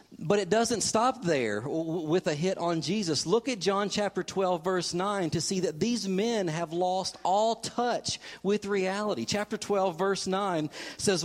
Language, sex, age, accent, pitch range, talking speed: English, male, 50-69, American, 155-195 Hz, 175 wpm